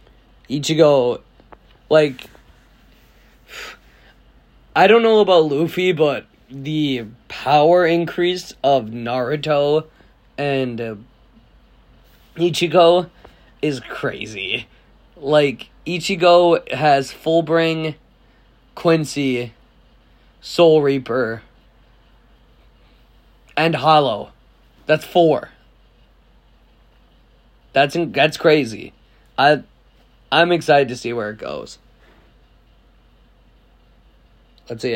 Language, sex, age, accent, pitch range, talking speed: English, male, 20-39, American, 125-160 Hz, 75 wpm